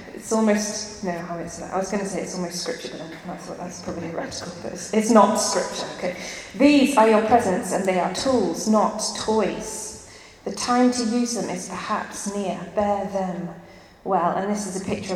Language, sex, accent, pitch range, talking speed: English, female, British, 185-215 Hz, 205 wpm